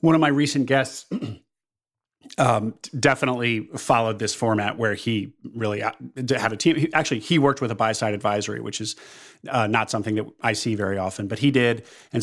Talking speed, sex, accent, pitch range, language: 180 wpm, male, American, 115-145 Hz, English